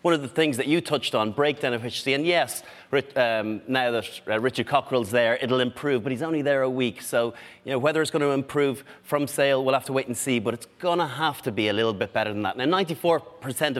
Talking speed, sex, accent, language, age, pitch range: 240 wpm, male, Irish, English, 30-49, 125-160 Hz